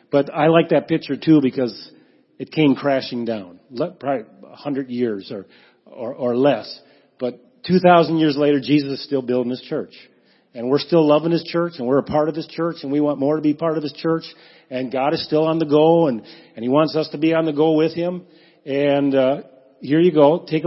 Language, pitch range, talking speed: English, 145-165 Hz, 220 wpm